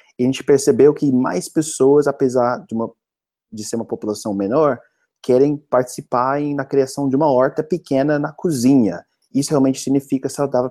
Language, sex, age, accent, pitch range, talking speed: Portuguese, male, 20-39, Brazilian, 105-130 Hz, 170 wpm